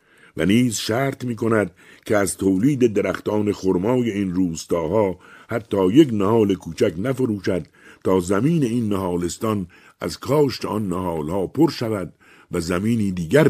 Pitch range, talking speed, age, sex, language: 85-120 Hz, 135 wpm, 60-79, male, Persian